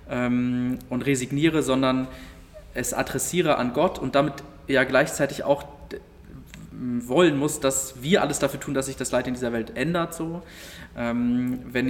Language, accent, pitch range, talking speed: German, German, 115-135 Hz, 145 wpm